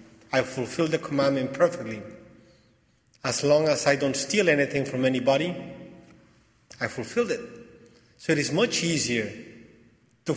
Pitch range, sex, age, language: 115-145 Hz, male, 40-59, English